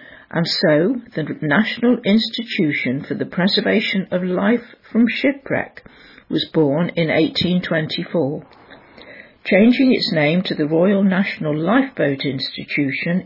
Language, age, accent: English, 60-79, British